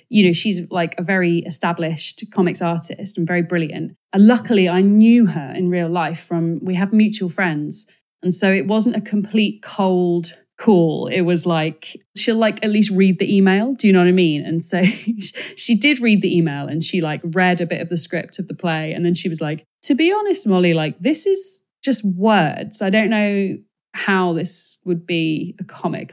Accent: British